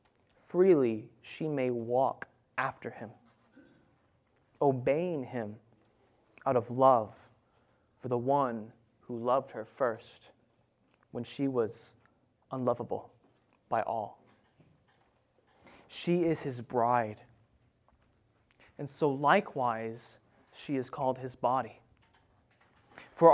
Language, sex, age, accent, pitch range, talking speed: English, male, 20-39, American, 115-150 Hz, 95 wpm